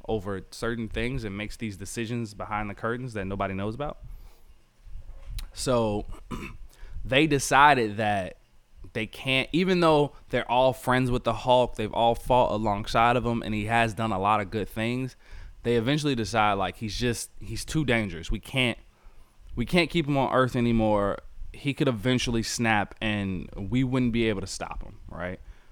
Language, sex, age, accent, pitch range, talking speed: English, male, 20-39, American, 100-125 Hz, 175 wpm